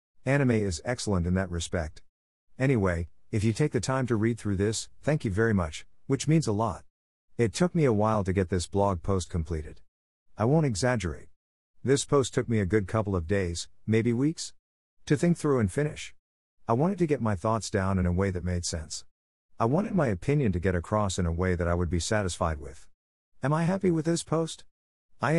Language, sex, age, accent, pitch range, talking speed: English, male, 50-69, American, 85-125 Hz, 215 wpm